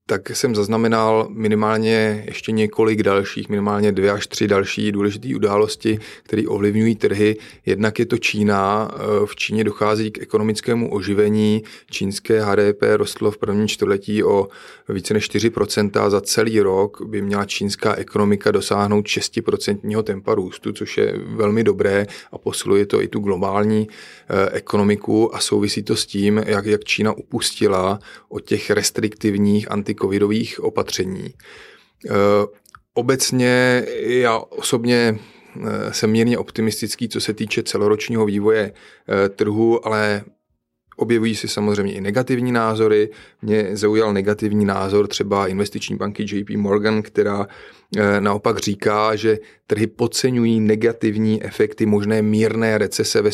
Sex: male